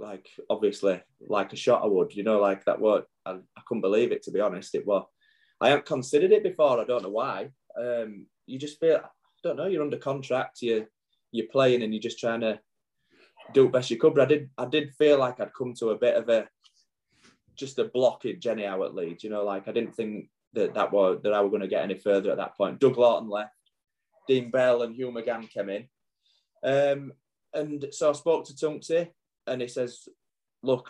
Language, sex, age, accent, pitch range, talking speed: English, male, 20-39, British, 110-140 Hz, 225 wpm